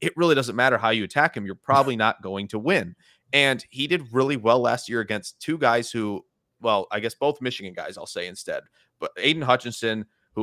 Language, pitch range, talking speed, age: English, 105-130 Hz, 220 wpm, 30-49